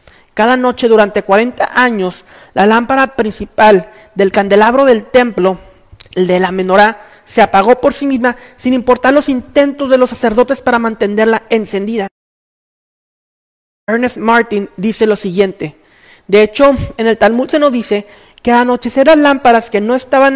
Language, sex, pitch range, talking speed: Spanish, male, 200-250 Hz, 155 wpm